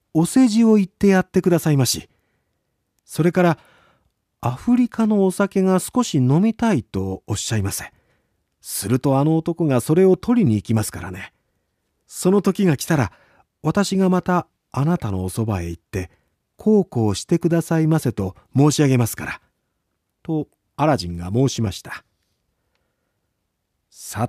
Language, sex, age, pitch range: Japanese, male, 40-59, 110-185 Hz